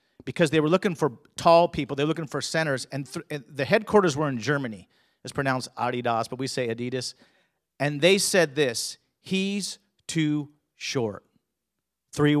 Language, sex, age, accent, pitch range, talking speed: English, male, 40-59, American, 135-190 Hz, 170 wpm